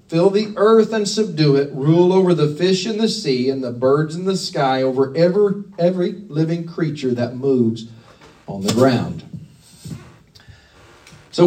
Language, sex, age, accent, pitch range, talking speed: English, male, 40-59, American, 175-225 Hz, 155 wpm